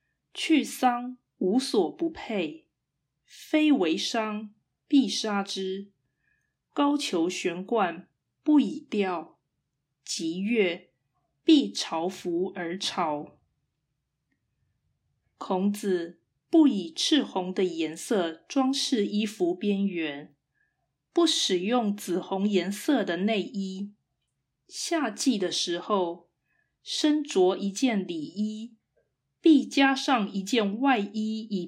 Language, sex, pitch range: Chinese, female, 175-260 Hz